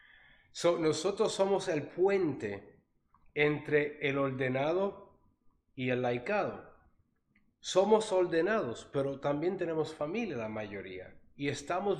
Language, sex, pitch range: Spanish, male, 125-175 Hz